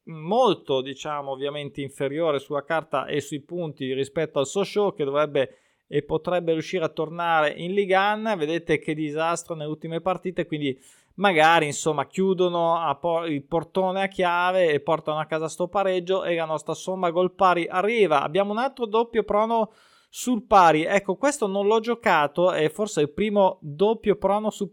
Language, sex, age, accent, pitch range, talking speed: Italian, male, 20-39, native, 155-200 Hz, 165 wpm